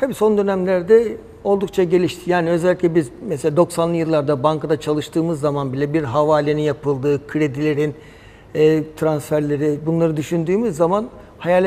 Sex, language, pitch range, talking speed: male, Turkish, 165-215 Hz, 130 wpm